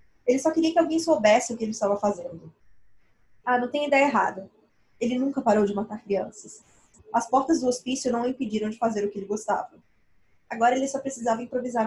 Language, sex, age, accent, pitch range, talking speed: Portuguese, female, 20-39, Brazilian, 205-255 Hz, 200 wpm